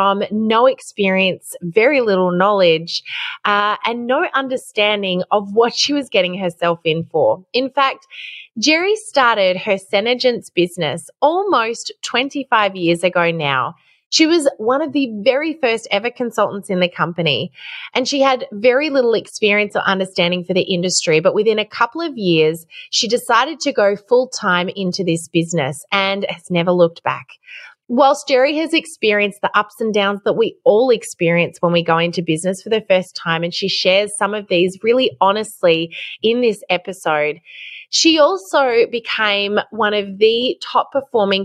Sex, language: female, English